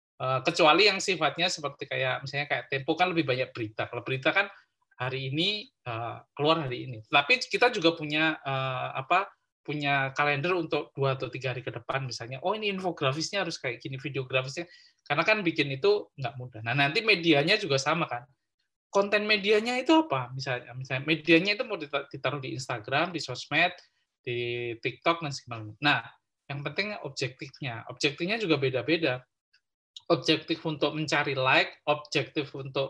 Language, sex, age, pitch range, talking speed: Indonesian, male, 20-39, 135-180 Hz, 155 wpm